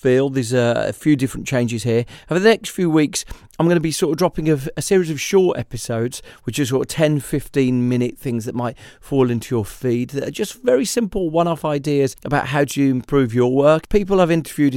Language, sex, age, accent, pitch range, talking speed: English, male, 40-59, British, 115-140 Hz, 230 wpm